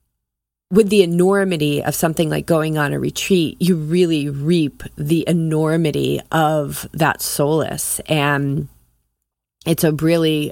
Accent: American